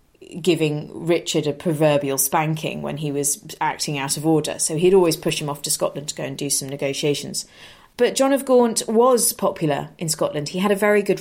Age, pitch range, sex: 30-49, 160-210 Hz, female